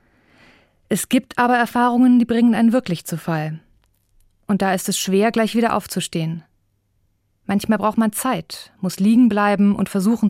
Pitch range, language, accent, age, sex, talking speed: 160-220 Hz, German, German, 30-49, female, 155 wpm